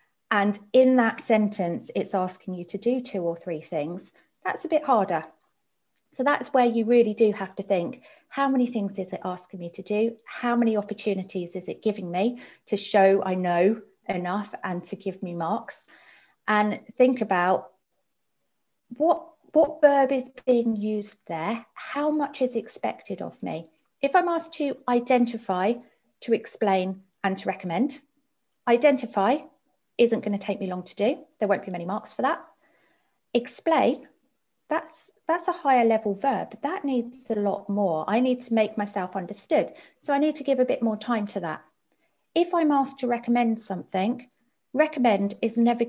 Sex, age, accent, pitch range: female, 30-49, British, 200-255 Hz